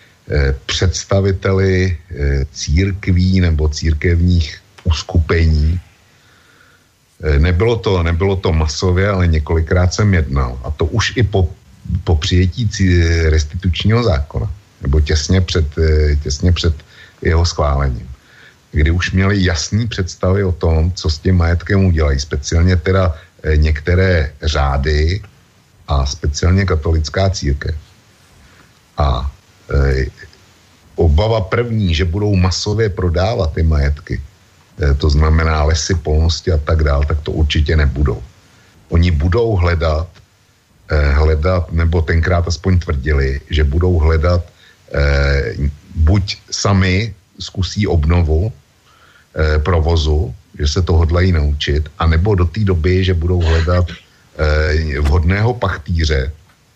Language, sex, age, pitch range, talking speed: Slovak, male, 60-79, 75-95 Hz, 105 wpm